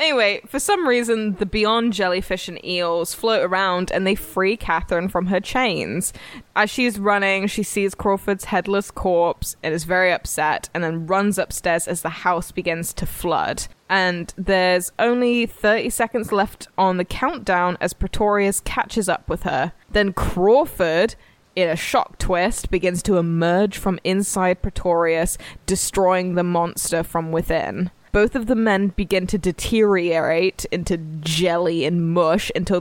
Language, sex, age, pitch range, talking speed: English, female, 10-29, 175-205 Hz, 155 wpm